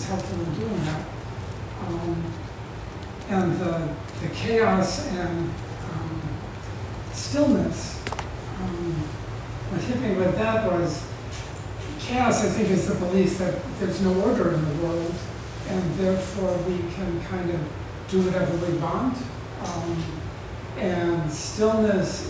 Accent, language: American, English